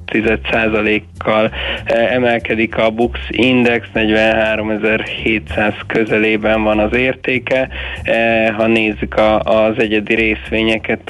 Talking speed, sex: 95 wpm, male